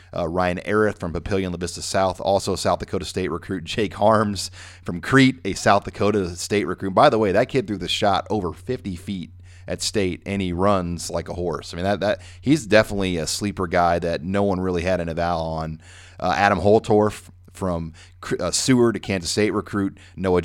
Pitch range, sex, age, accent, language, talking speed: 90-100 Hz, male, 30-49, American, English, 205 wpm